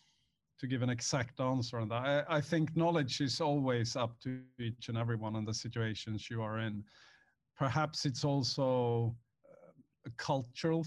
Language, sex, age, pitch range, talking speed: English, male, 50-69, 120-145 Hz, 160 wpm